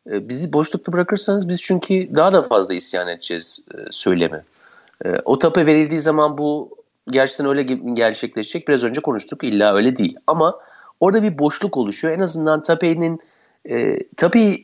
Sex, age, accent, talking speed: male, 50-69, native, 140 wpm